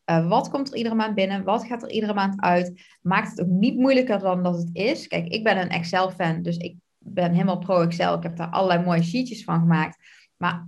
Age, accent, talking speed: 20-39, Dutch, 230 wpm